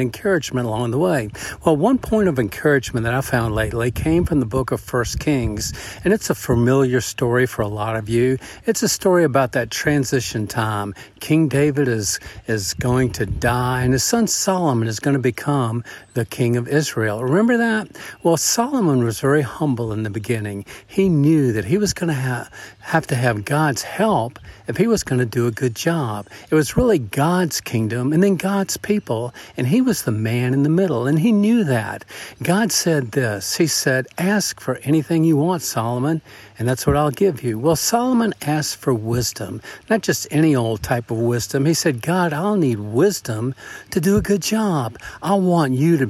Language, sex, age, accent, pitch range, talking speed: English, male, 50-69, American, 120-175 Hz, 200 wpm